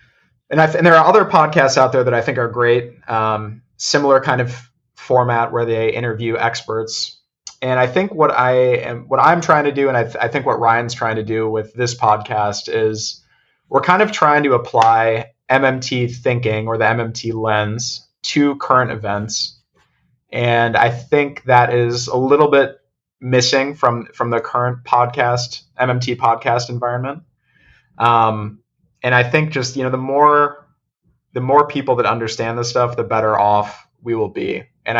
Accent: American